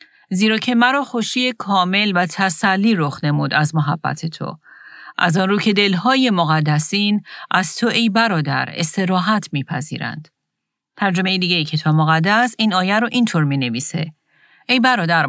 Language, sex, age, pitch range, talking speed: Persian, female, 40-59, 160-205 Hz, 155 wpm